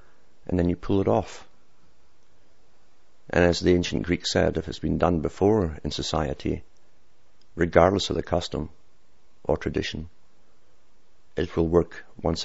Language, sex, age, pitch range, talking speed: English, male, 50-69, 80-90 Hz, 140 wpm